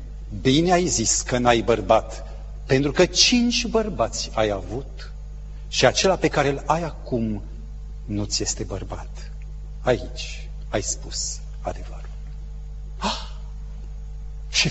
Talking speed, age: 110 wpm, 40-59